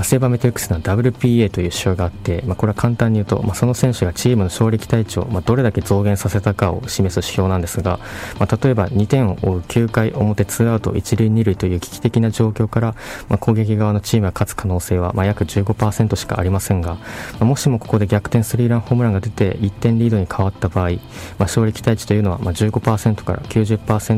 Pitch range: 95-120 Hz